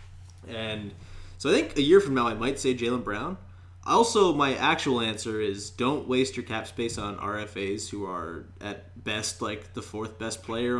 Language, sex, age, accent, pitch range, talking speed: English, male, 20-39, American, 100-125 Hz, 190 wpm